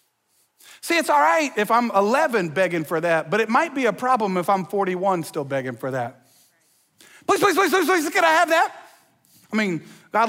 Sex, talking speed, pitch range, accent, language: male, 205 wpm, 190-295 Hz, American, English